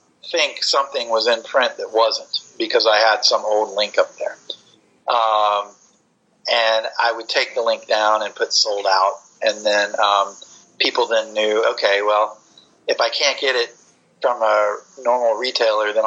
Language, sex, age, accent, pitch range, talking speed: English, male, 30-49, American, 105-125 Hz, 170 wpm